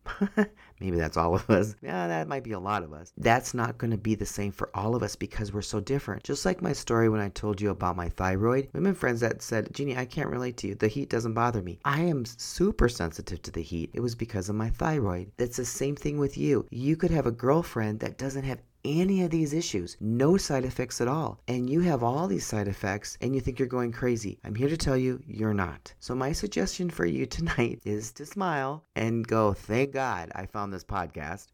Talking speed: 240 wpm